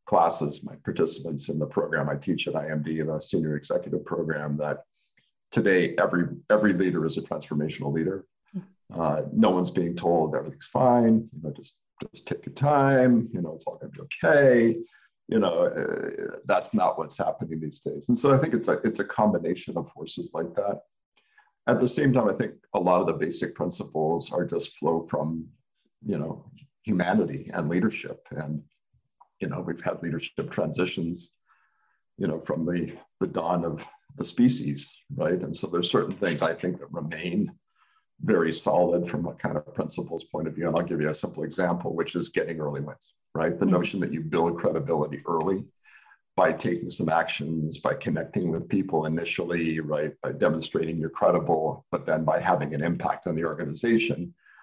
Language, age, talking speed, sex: English, 50-69, 185 wpm, male